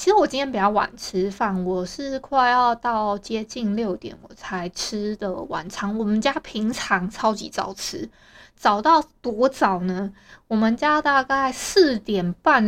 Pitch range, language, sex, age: 205-280 Hz, Chinese, female, 20-39